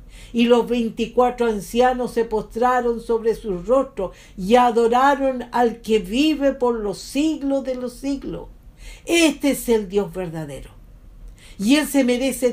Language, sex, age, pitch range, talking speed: English, female, 50-69, 200-265 Hz, 140 wpm